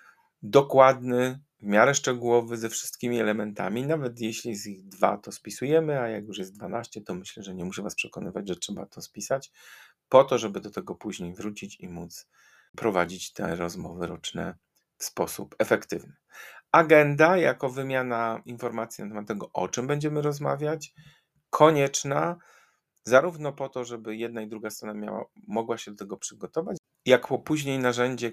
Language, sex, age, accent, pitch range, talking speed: Polish, male, 40-59, native, 105-135 Hz, 160 wpm